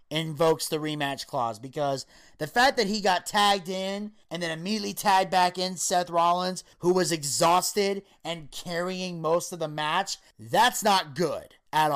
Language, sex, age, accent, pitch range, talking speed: English, male, 30-49, American, 150-180 Hz, 165 wpm